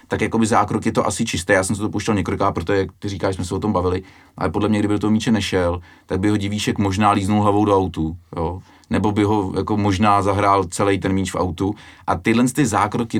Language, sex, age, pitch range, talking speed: Czech, male, 30-49, 95-115 Hz, 250 wpm